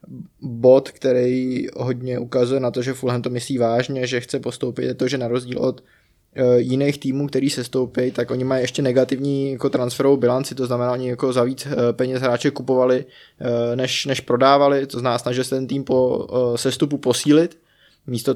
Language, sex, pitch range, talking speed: Czech, male, 120-135 Hz, 185 wpm